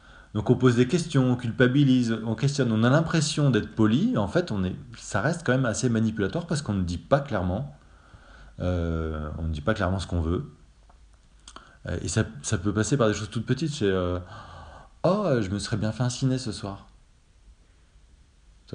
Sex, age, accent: male, 30-49, French